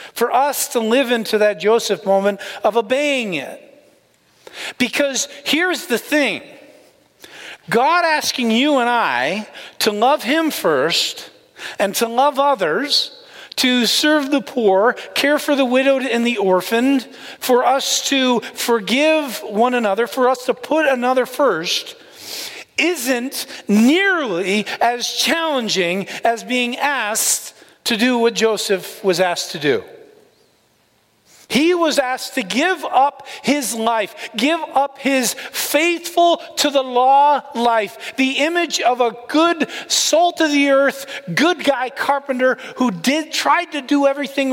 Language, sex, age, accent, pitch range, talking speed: English, male, 40-59, American, 230-290 Hz, 135 wpm